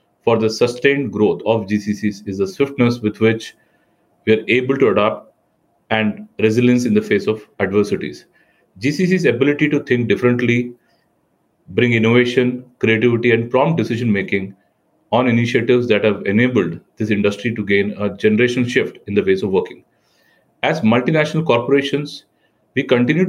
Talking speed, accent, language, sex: 145 wpm, Indian, English, male